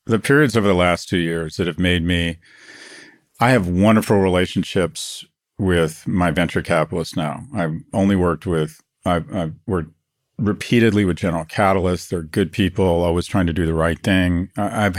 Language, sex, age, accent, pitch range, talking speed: English, male, 40-59, American, 85-100 Hz, 170 wpm